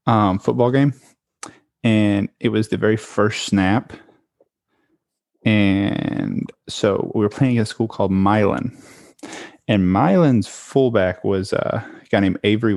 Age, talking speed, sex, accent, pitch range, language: 20-39, 130 wpm, male, American, 105-120 Hz, English